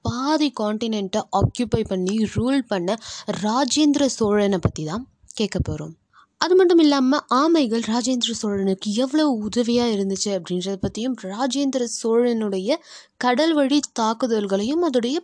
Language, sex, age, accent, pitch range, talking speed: Tamil, female, 20-39, native, 200-280 Hz, 110 wpm